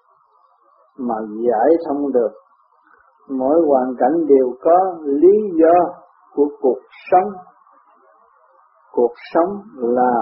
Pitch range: 130-165 Hz